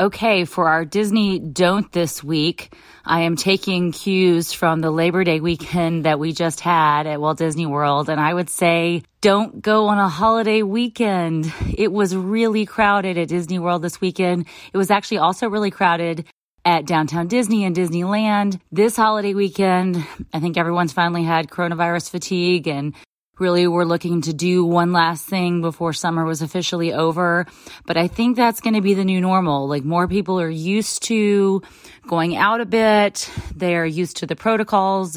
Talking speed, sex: 175 wpm, female